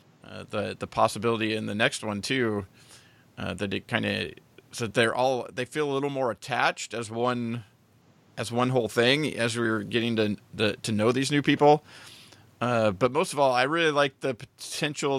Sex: male